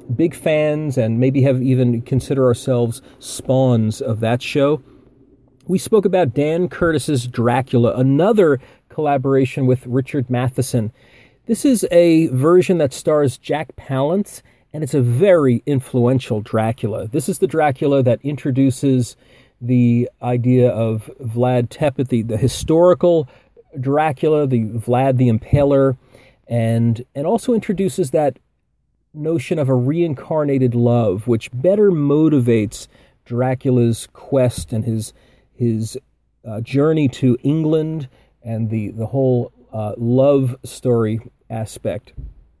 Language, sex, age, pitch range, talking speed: English, male, 40-59, 120-145 Hz, 120 wpm